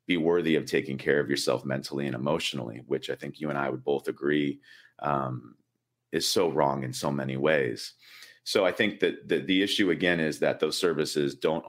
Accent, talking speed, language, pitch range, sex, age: American, 200 wpm, English, 70-80 Hz, male, 40-59